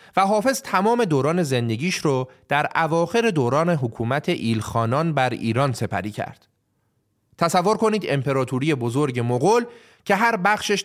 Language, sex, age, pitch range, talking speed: Persian, male, 30-49, 120-200 Hz, 125 wpm